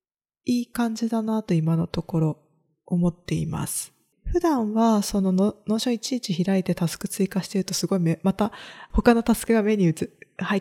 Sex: female